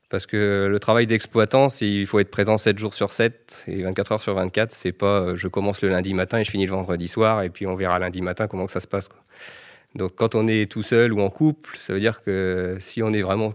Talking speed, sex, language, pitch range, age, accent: 275 wpm, male, French, 100-115 Hz, 20-39, French